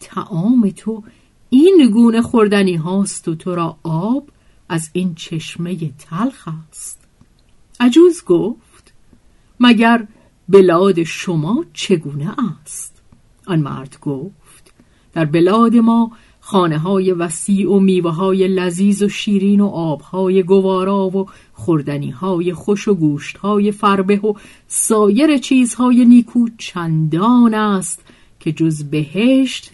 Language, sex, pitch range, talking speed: Persian, female, 170-230 Hz, 115 wpm